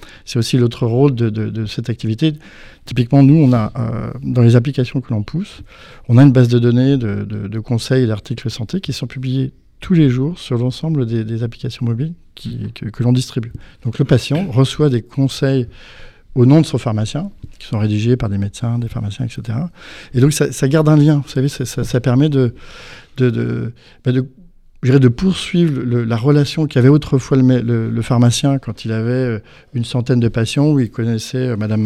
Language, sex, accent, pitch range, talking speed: French, male, French, 115-140 Hz, 215 wpm